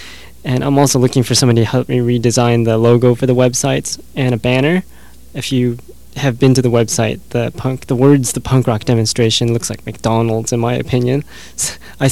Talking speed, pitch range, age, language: 200 wpm, 115-130 Hz, 20-39, English